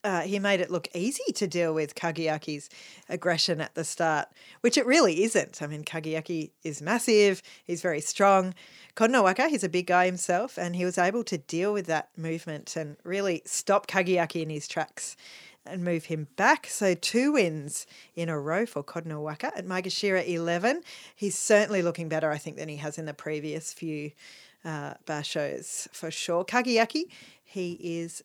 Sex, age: female, 40-59